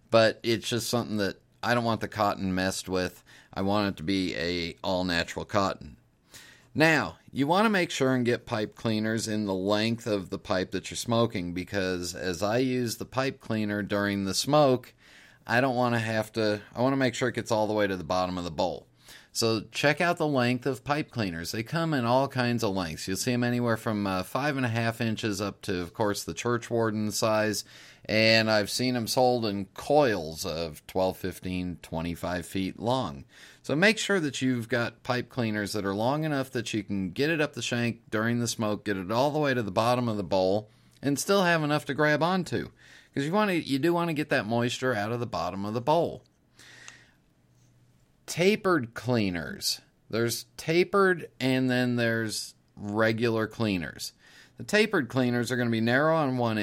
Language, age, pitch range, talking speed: English, 40-59, 100-130 Hz, 205 wpm